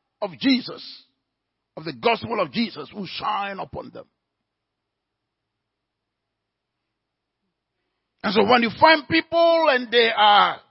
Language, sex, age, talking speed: English, male, 50-69, 110 wpm